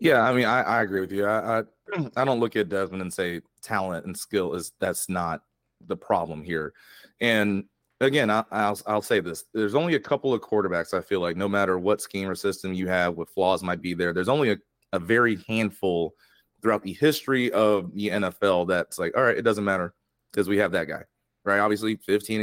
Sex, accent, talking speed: male, American, 220 wpm